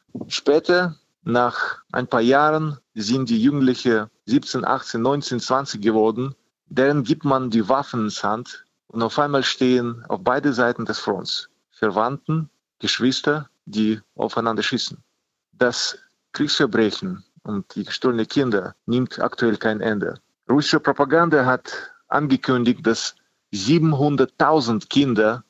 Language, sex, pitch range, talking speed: German, male, 115-145 Hz, 120 wpm